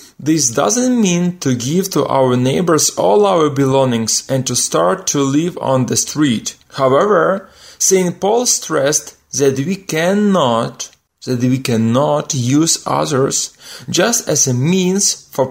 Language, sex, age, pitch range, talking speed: Ukrainian, male, 30-49, 125-185 Hz, 140 wpm